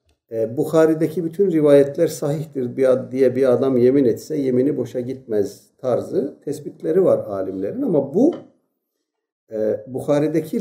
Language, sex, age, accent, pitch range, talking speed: Turkish, male, 60-79, native, 135-195 Hz, 105 wpm